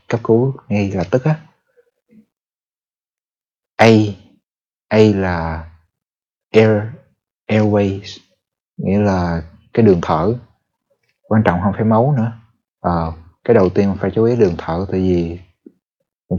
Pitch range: 95-120 Hz